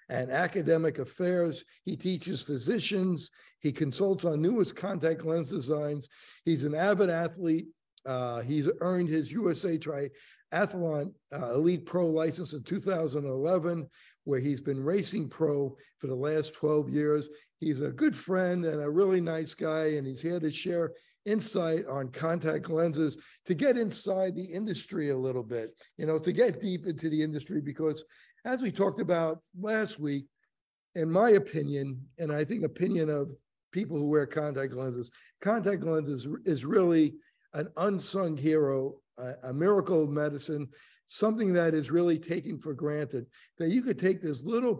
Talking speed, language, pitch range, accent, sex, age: 155 wpm, English, 150-185 Hz, American, male, 60-79